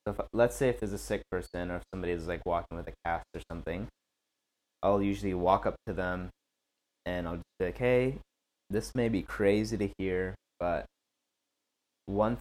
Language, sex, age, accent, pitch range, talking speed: English, male, 20-39, American, 85-95 Hz, 195 wpm